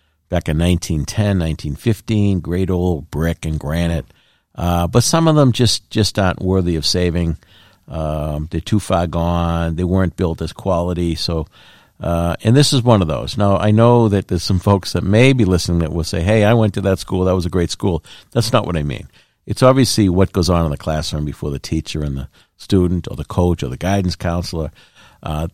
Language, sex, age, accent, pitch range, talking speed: English, male, 50-69, American, 80-100 Hz, 210 wpm